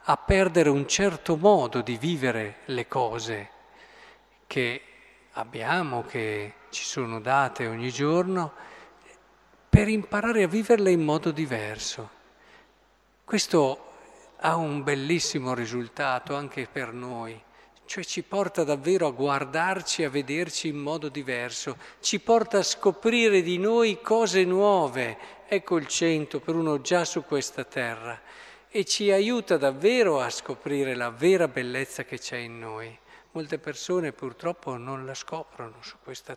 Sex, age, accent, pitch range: male, 50-69, native, 125-180 Hz